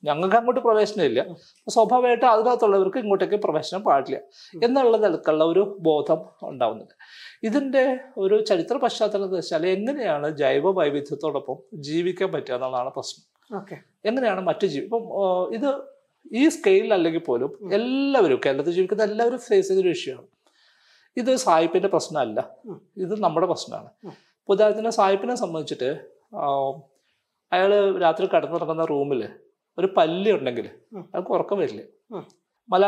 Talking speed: 50 wpm